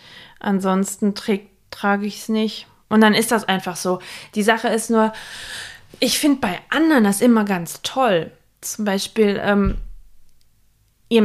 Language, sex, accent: German, female, German